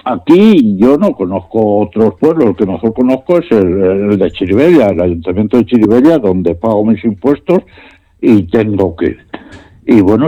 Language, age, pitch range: Spanish, 60-79, 105-170 Hz